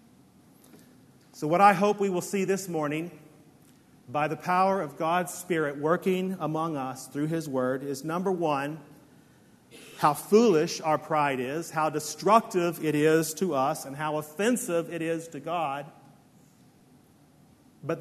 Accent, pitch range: American, 150-185 Hz